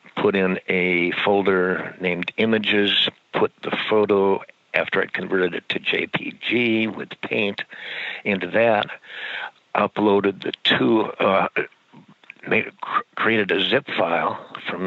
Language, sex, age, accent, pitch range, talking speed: English, male, 60-79, American, 90-100 Hz, 115 wpm